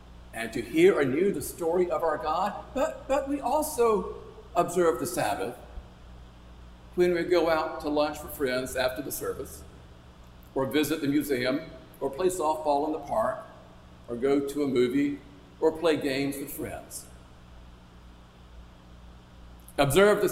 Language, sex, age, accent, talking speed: English, male, 50-69, American, 145 wpm